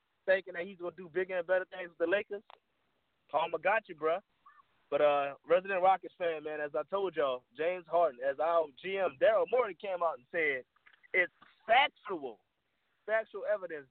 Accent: American